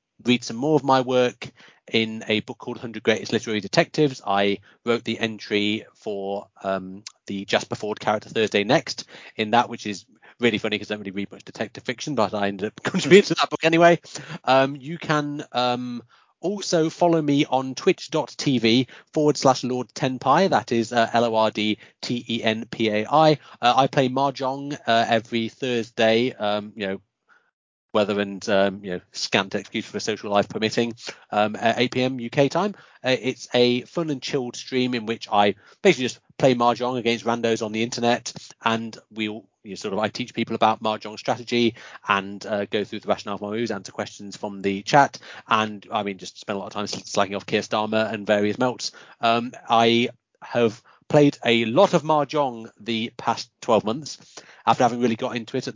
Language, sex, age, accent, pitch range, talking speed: English, male, 30-49, British, 110-130 Hz, 185 wpm